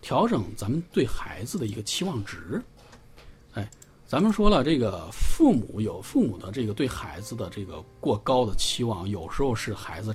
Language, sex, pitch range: Chinese, male, 100-135 Hz